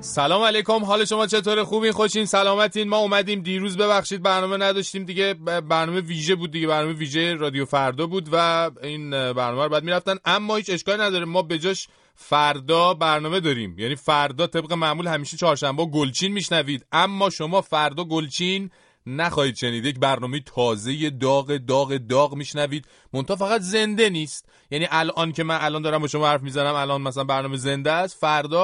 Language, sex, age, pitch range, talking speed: Persian, male, 30-49, 125-190 Hz, 170 wpm